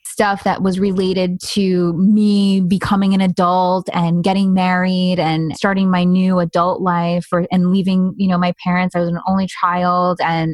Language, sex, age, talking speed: English, female, 20-39, 175 wpm